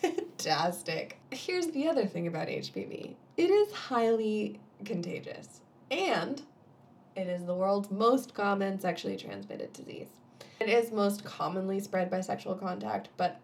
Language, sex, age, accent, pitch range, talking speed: English, female, 20-39, American, 175-215 Hz, 135 wpm